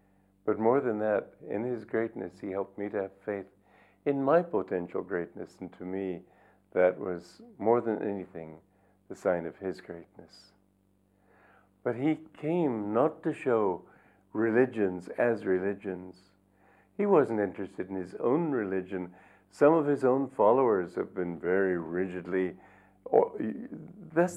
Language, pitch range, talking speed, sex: English, 95-140 Hz, 140 wpm, male